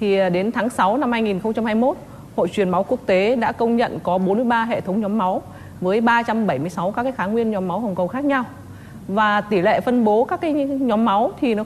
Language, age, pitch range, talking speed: Vietnamese, 20-39, 200-245 Hz, 215 wpm